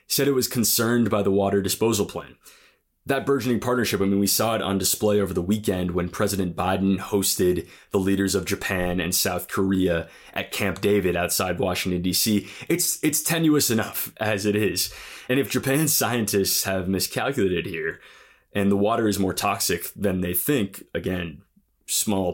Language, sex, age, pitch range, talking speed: English, male, 20-39, 95-115 Hz, 170 wpm